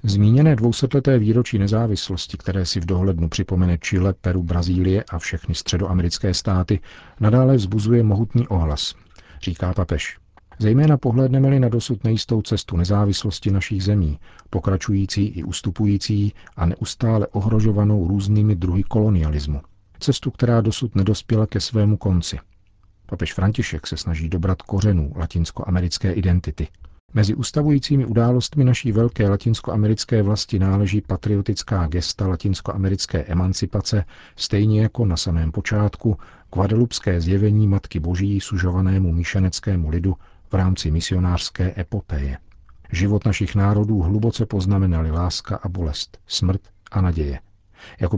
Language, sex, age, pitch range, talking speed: Czech, male, 40-59, 90-110 Hz, 120 wpm